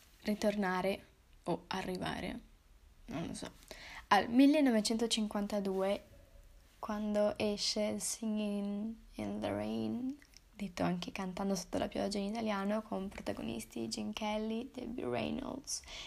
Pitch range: 195-235 Hz